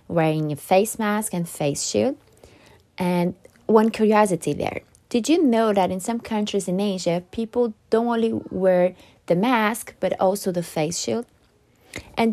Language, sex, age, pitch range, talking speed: English, female, 20-39, 175-230 Hz, 155 wpm